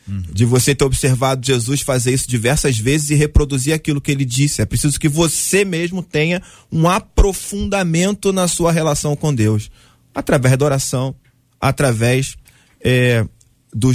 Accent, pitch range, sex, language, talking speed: Brazilian, 120-170 Hz, male, Portuguese, 140 wpm